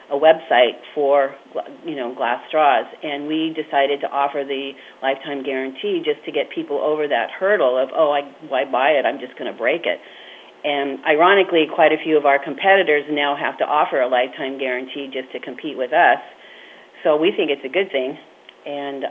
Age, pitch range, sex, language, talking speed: 40-59, 140-160 Hz, female, English, 195 wpm